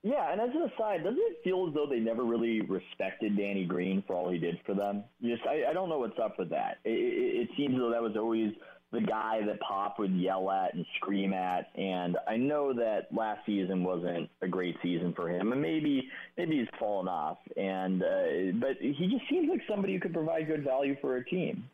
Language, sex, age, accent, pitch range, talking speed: English, male, 30-49, American, 95-150 Hz, 230 wpm